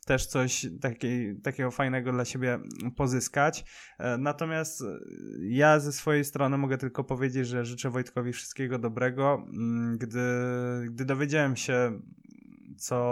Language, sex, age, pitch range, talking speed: Polish, male, 20-39, 125-140 Hz, 115 wpm